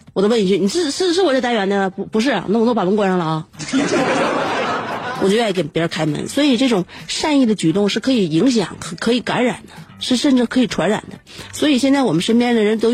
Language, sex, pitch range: Chinese, female, 180-245 Hz